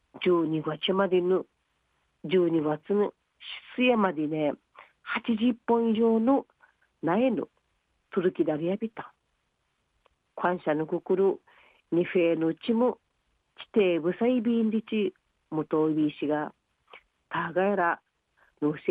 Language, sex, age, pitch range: Japanese, female, 40-59, 165-225 Hz